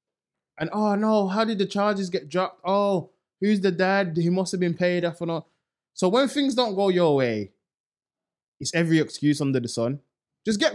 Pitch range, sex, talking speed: 130-185 Hz, male, 200 wpm